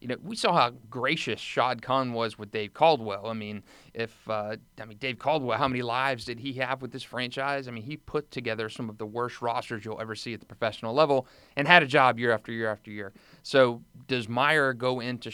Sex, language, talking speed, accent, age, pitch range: male, English, 235 wpm, American, 30-49, 110-130 Hz